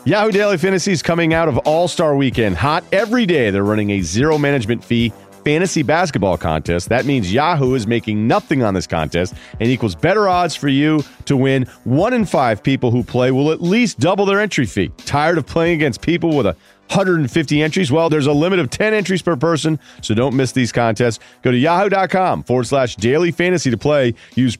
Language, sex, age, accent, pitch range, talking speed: English, male, 40-59, American, 115-165 Hz, 200 wpm